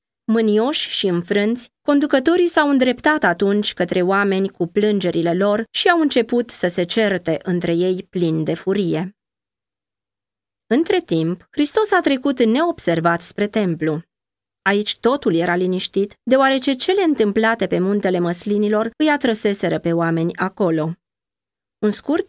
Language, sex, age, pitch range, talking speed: Romanian, female, 20-39, 165-230 Hz, 130 wpm